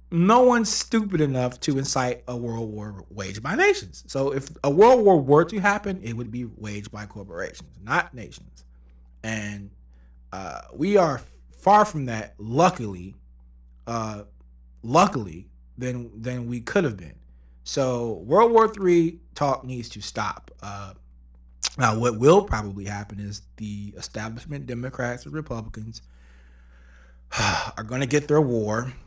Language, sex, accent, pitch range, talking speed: English, male, American, 100-135 Hz, 145 wpm